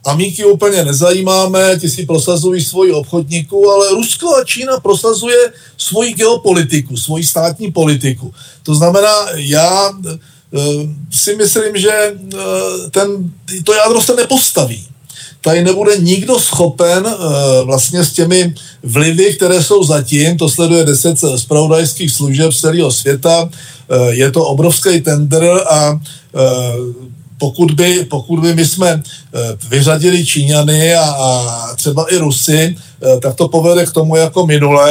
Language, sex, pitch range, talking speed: Czech, male, 145-180 Hz, 130 wpm